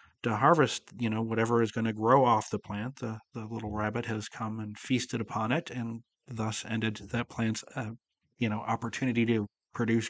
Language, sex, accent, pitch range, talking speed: English, male, American, 110-125 Hz, 195 wpm